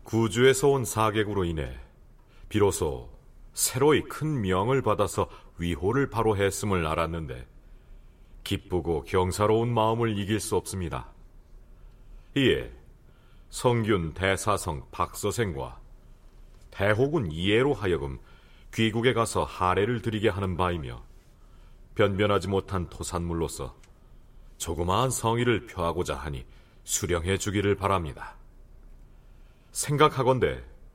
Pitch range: 85-110 Hz